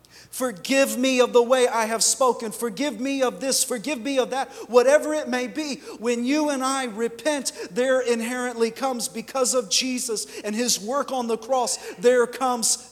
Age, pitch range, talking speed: 40-59, 240-270 Hz, 180 wpm